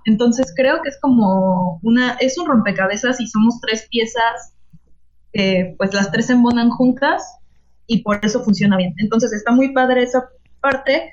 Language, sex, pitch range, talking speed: Spanish, female, 200-235 Hz, 165 wpm